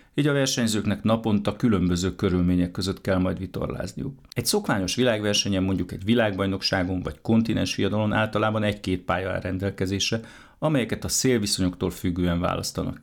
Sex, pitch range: male, 95-120 Hz